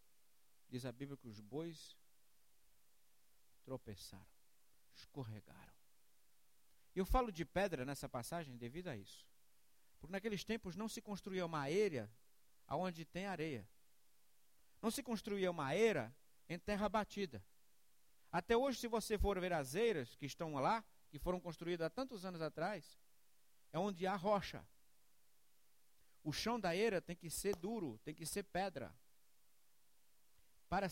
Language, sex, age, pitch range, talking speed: English, male, 60-79, 145-215 Hz, 140 wpm